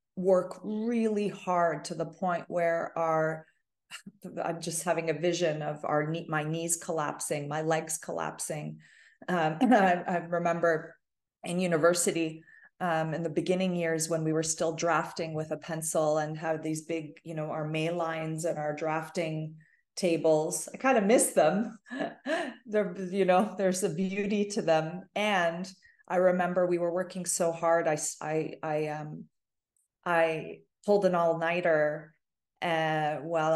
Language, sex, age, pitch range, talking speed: English, female, 30-49, 160-185 Hz, 150 wpm